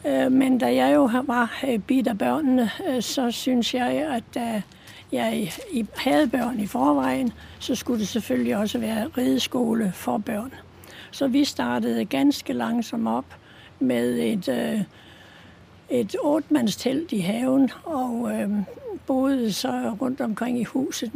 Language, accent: Danish, native